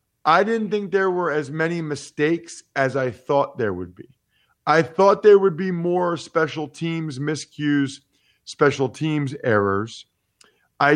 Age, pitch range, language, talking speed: 40-59, 125-165 Hz, English, 150 wpm